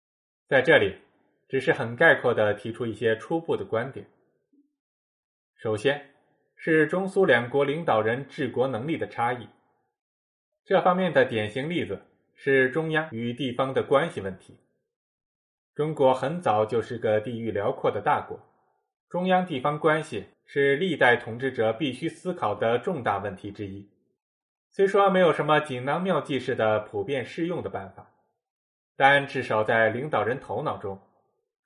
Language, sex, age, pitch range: Chinese, male, 20-39, 120-180 Hz